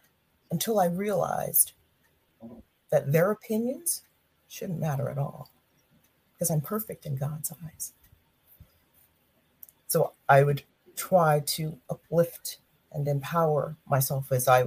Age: 40-59